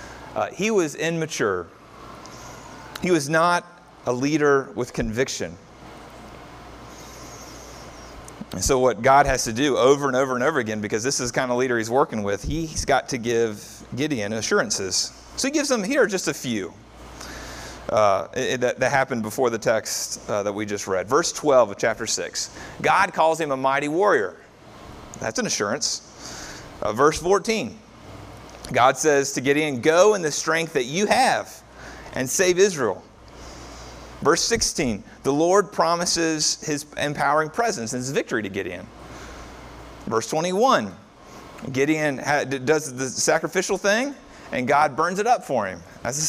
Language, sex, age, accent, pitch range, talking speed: English, male, 30-49, American, 125-180 Hz, 155 wpm